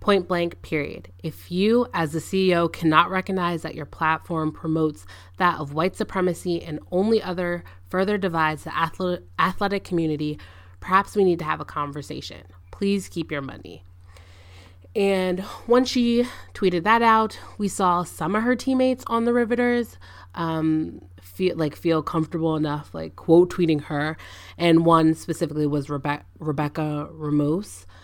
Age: 20-39